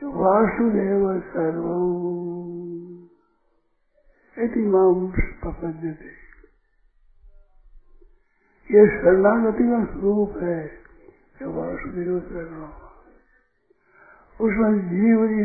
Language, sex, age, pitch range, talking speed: Hindi, male, 60-79, 195-240 Hz, 55 wpm